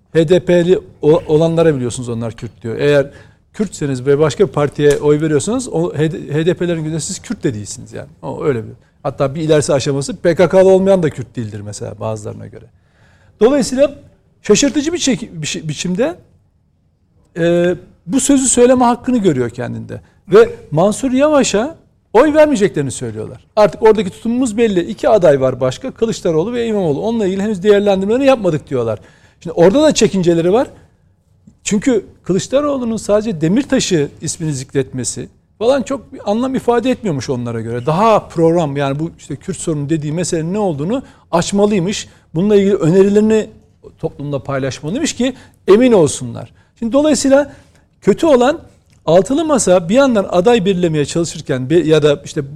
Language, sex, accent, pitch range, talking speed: Turkish, male, native, 140-225 Hz, 140 wpm